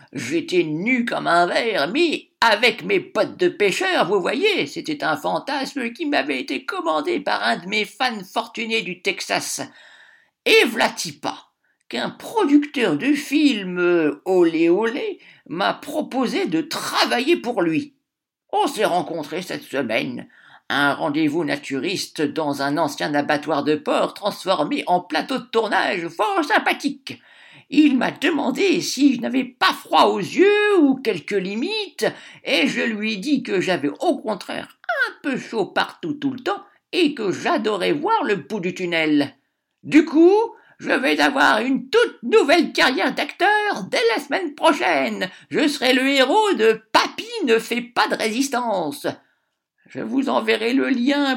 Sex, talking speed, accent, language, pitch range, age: male, 155 wpm, French, French, 215-330 Hz, 50-69